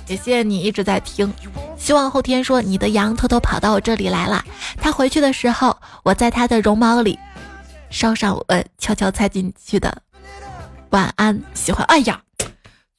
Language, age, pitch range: Chinese, 20-39, 205-255 Hz